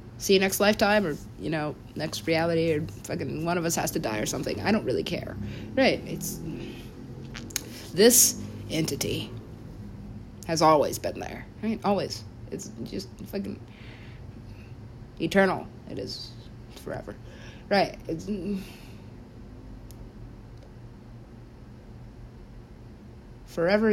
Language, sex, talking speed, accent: English, female, 110 wpm, American